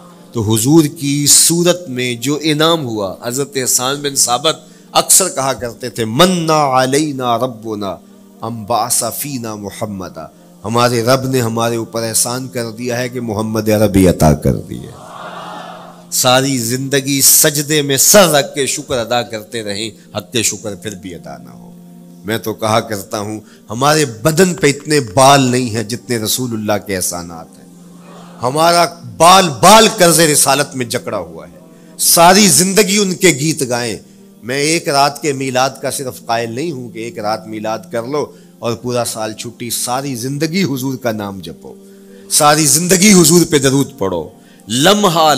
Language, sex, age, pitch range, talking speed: Urdu, male, 40-59, 115-155 Hz, 165 wpm